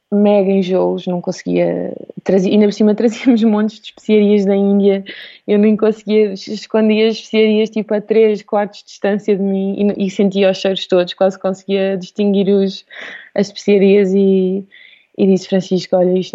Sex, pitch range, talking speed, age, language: female, 190-210 Hz, 160 wpm, 20-39, Portuguese